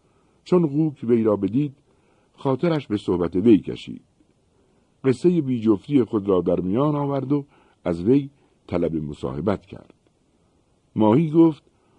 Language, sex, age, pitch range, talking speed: Persian, male, 60-79, 85-130 Hz, 125 wpm